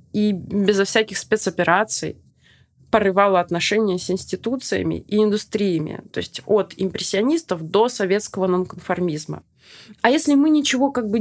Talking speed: 125 wpm